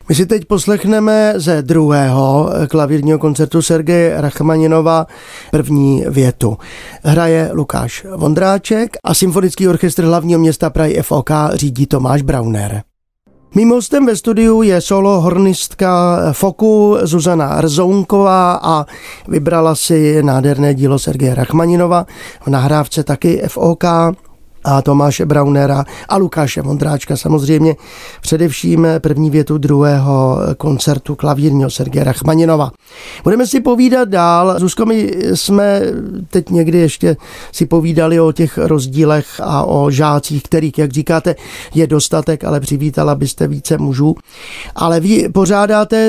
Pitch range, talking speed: 145-185 Hz, 120 wpm